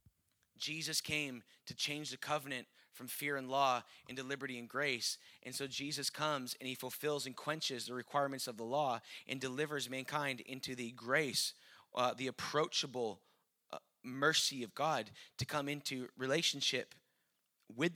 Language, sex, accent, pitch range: English, male, American, 130-155 Hz